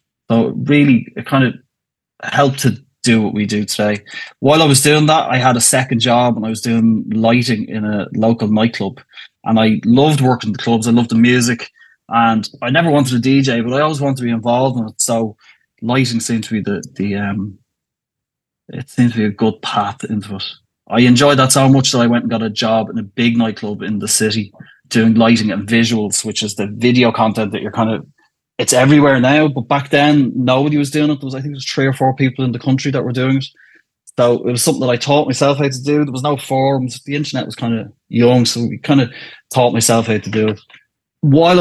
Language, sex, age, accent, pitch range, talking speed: English, male, 20-39, Irish, 110-130 Hz, 240 wpm